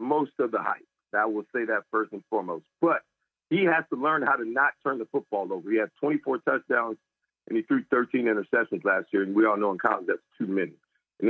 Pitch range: 125-185 Hz